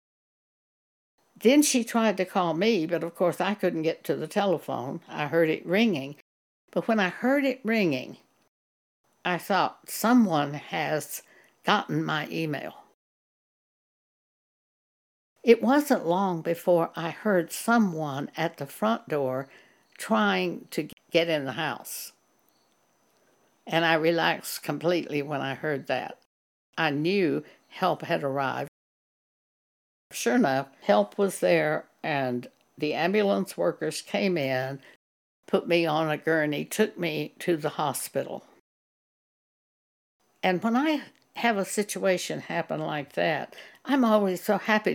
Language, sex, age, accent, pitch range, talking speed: English, female, 60-79, American, 150-205 Hz, 130 wpm